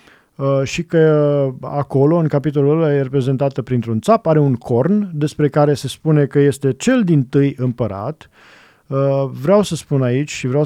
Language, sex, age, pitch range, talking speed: Romanian, male, 40-59, 130-160 Hz, 165 wpm